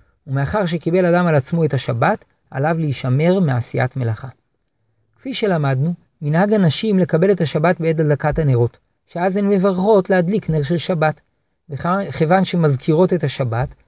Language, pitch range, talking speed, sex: Hebrew, 140-185 Hz, 140 wpm, male